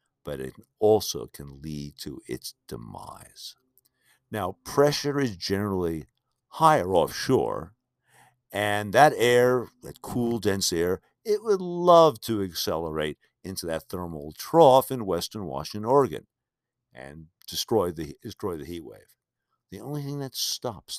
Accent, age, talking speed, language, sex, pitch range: American, 60-79, 130 wpm, English, male, 80-125 Hz